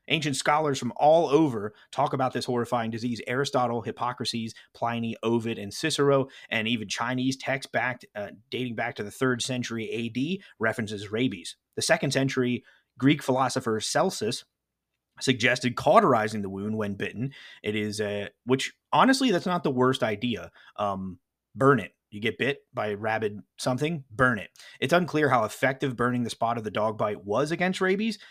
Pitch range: 110-135 Hz